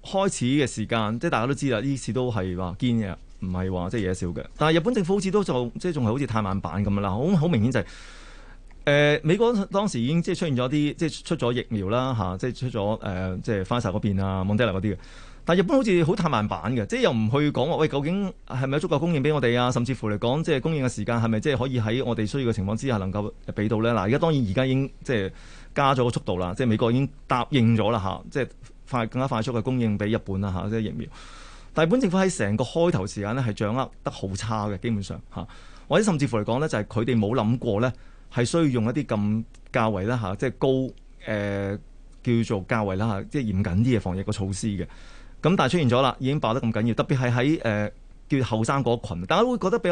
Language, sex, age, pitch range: Chinese, male, 20-39, 105-145 Hz